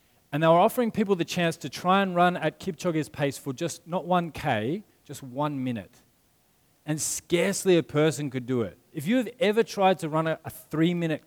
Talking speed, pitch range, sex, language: 200 wpm, 130-175 Hz, male, English